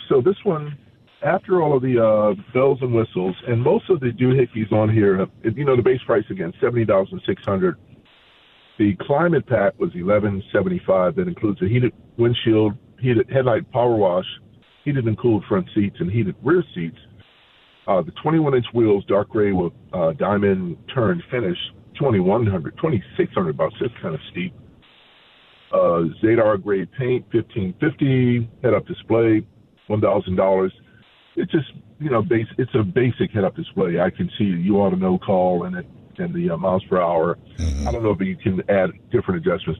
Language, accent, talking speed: English, American, 160 wpm